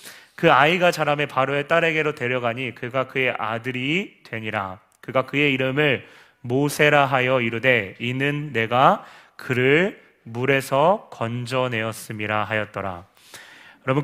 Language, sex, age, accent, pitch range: Korean, male, 30-49, native, 120-155 Hz